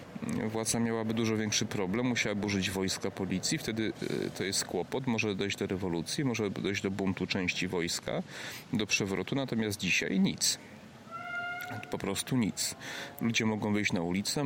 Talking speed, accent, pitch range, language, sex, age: 150 wpm, native, 95-115 Hz, Polish, male, 40-59